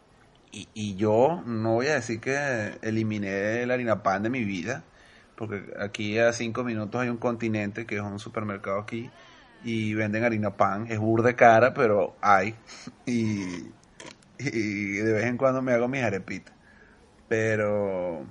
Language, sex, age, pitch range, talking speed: Spanish, male, 30-49, 110-145 Hz, 155 wpm